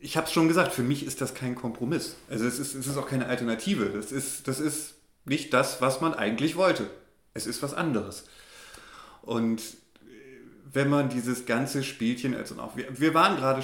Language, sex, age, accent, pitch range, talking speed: German, male, 30-49, German, 120-165 Hz, 200 wpm